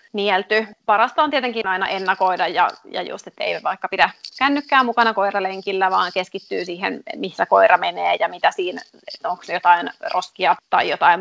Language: Finnish